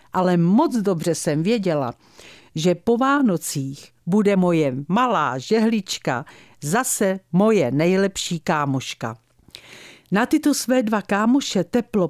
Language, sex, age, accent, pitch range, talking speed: Czech, female, 50-69, native, 165-235 Hz, 110 wpm